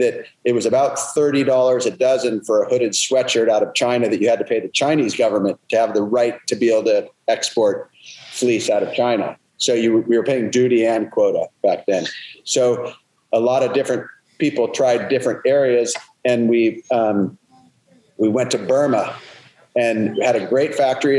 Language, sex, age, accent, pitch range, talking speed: English, male, 40-59, American, 115-135 Hz, 185 wpm